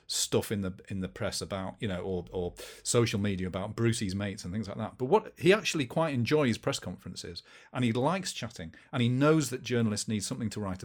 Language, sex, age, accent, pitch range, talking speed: English, male, 40-59, British, 100-130 Hz, 225 wpm